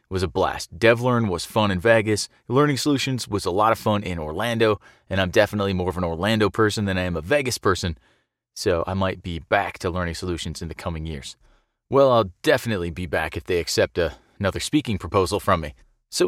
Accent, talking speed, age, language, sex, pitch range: American, 210 wpm, 30-49, English, male, 100-130 Hz